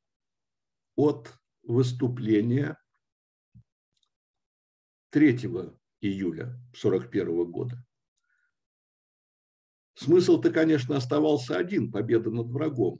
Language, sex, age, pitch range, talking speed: Russian, male, 60-79, 105-140 Hz, 60 wpm